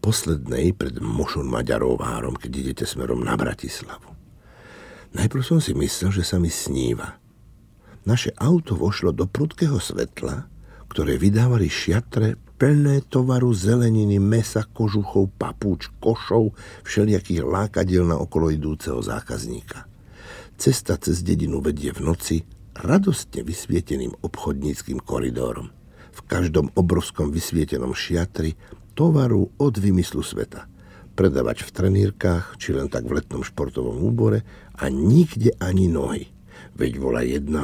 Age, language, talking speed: 60-79, Slovak, 120 wpm